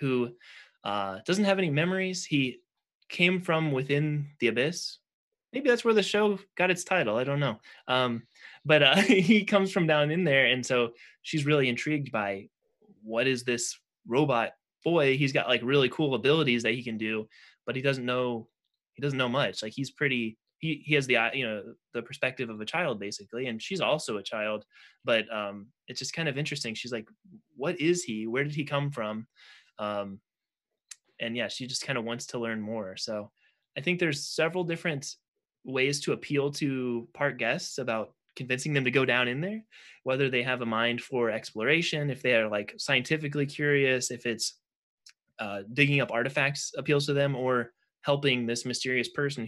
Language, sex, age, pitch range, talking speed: English, male, 20-39, 115-150 Hz, 190 wpm